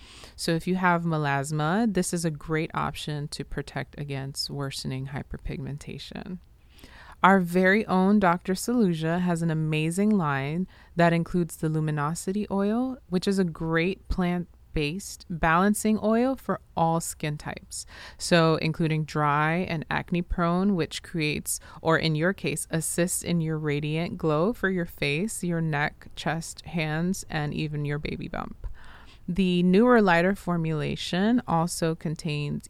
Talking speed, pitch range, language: 140 wpm, 155-190 Hz, English